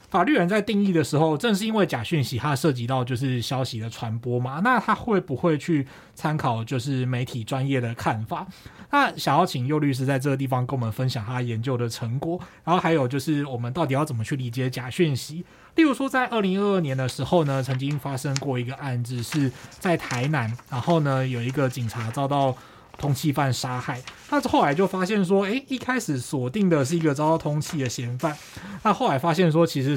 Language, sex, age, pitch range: Chinese, male, 20-39, 125-165 Hz